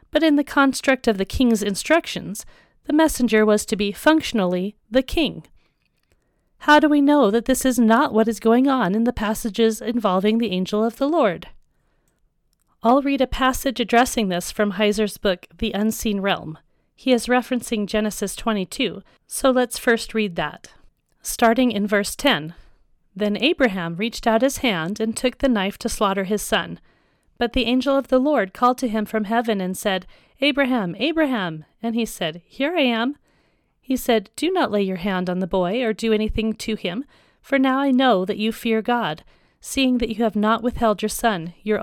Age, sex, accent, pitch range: 40-59, female, American, 205-255 Hz